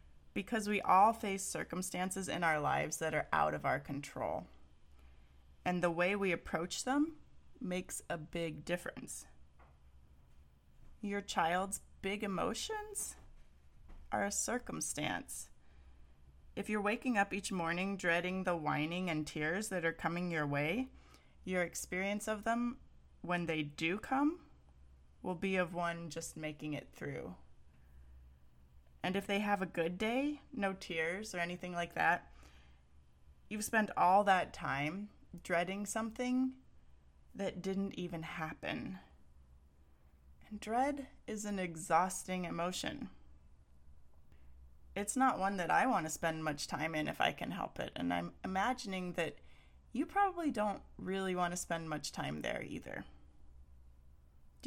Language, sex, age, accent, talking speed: English, female, 30-49, American, 135 wpm